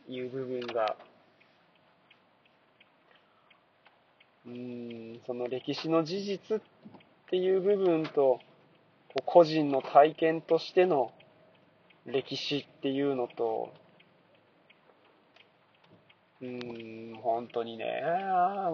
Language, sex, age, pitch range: Japanese, male, 20-39, 130-170 Hz